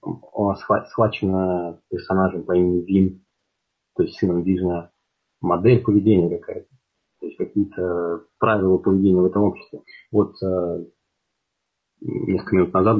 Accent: native